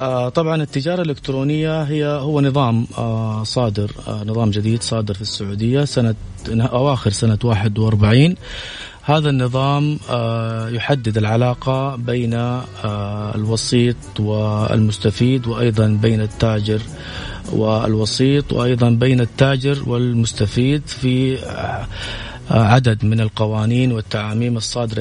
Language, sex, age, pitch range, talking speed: Arabic, male, 30-49, 110-130 Hz, 90 wpm